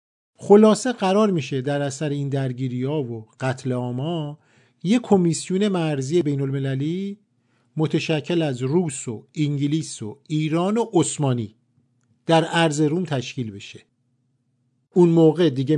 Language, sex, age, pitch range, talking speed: Persian, male, 50-69, 125-175 Hz, 120 wpm